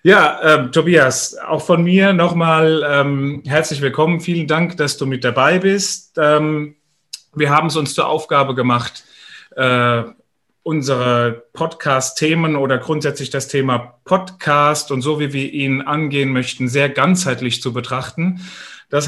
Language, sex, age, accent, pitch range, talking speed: German, male, 30-49, German, 135-160 Hz, 140 wpm